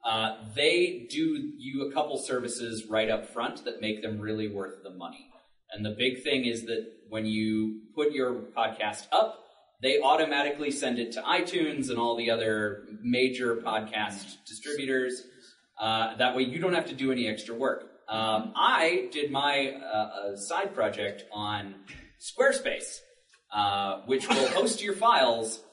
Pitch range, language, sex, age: 105-145 Hz, English, male, 30-49